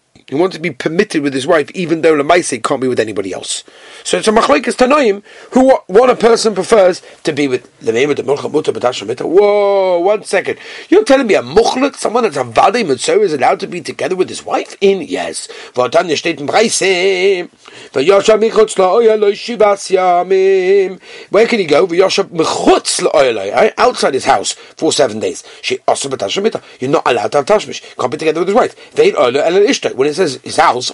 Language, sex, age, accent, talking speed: English, male, 40-59, British, 155 wpm